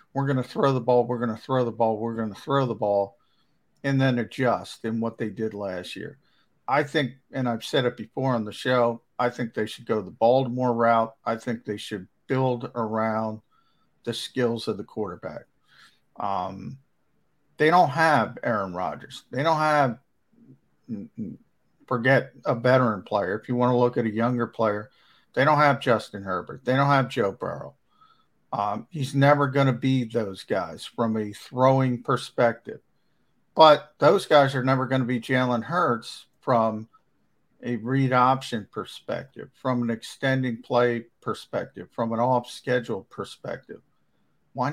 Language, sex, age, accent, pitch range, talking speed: English, male, 50-69, American, 115-135 Hz, 170 wpm